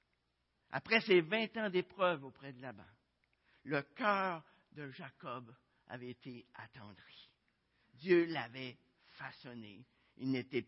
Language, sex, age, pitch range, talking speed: French, male, 60-79, 125-195 Hz, 110 wpm